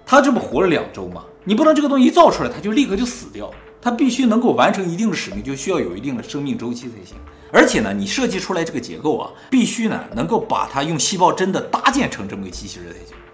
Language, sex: Chinese, male